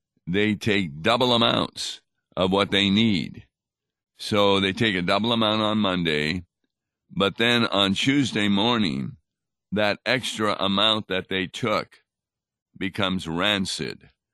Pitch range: 90-110 Hz